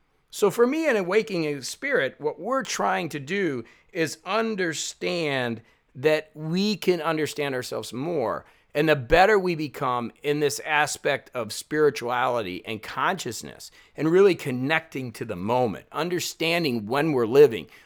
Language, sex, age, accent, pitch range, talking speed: English, male, 50-69, American, 130-175 Hz, 140 wpm